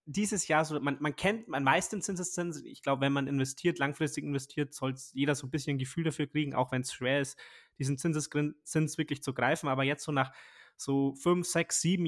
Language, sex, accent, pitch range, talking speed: German, male, German, 135-165 Hz, 220 wpm